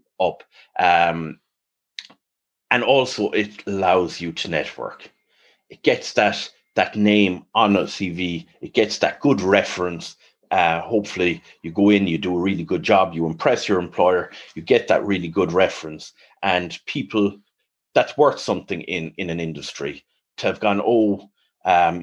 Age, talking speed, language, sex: 30-49, 155 wpm, English, male